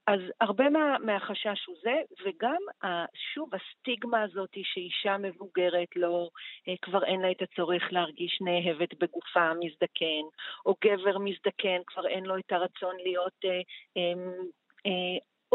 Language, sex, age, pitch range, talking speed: Hebrew, female, 40-59, 185-215 Hz, 125 wpm